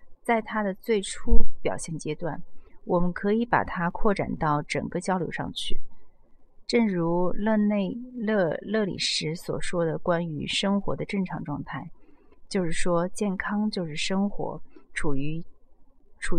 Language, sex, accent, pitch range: Chinese, female, native, 165-215 Hz